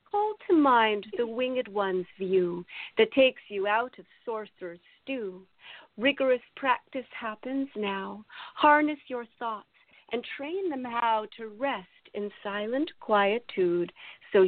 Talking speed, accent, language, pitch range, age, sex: 130 wpm, American, English, 195-265 Hz, 40-59, female